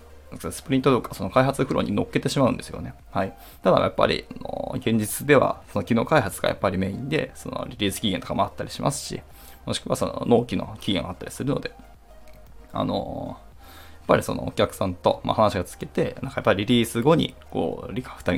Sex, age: male, 20-39